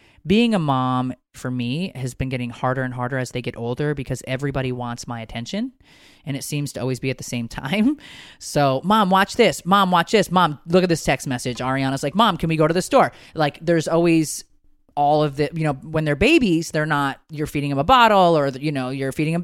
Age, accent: 30-49, American